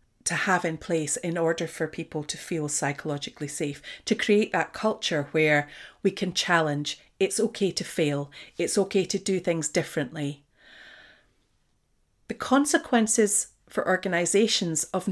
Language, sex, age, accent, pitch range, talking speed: English, female, 40-59, British, 160-220 Hz, 140 wpm